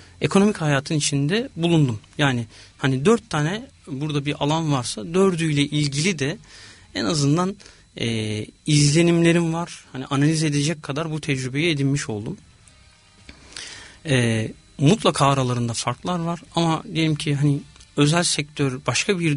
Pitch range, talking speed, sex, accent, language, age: 125-160 Hz, 125 wpm, male, native, Turkish, 40-59